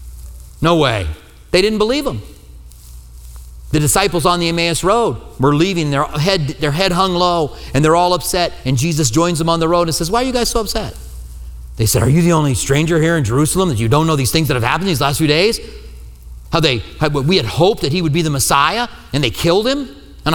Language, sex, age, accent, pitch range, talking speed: English, male, 40-59, American, 100-165 Hz, 225 wpm